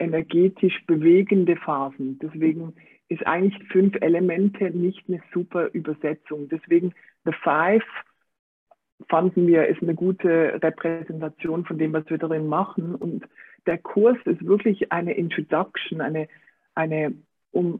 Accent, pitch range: German, 160-195 Hz